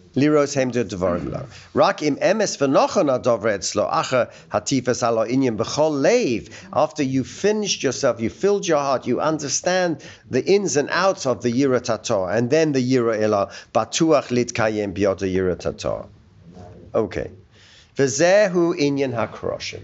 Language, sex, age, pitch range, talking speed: English, male, 50-69, 110-175 Hz, 90 wpm